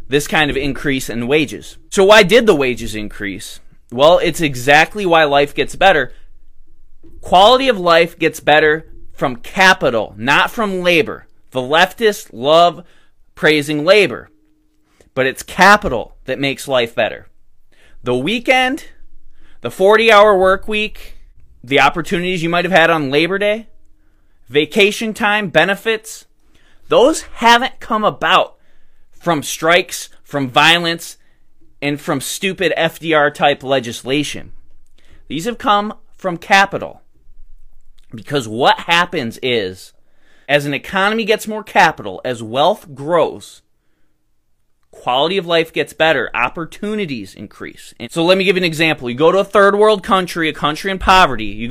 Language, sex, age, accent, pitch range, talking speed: English, male, 20-39, American, 130-195 Hz, 130 wpm